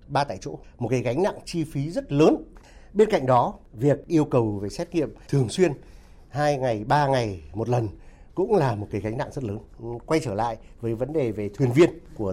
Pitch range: 110-160 Hz